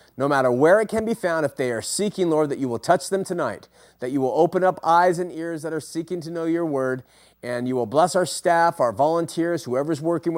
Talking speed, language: 250 wpm, English